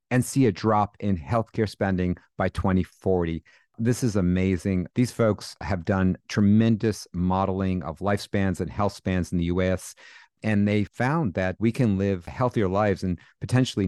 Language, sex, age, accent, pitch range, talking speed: English, male, 50-69, American, 95-110 Hz, 160 wpm